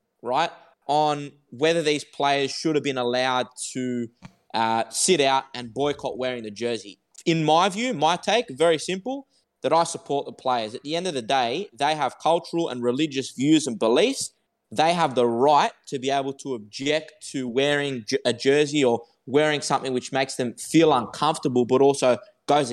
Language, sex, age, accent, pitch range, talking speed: English, male, 20-39, Australian, 125-160 Hz, 180 wpm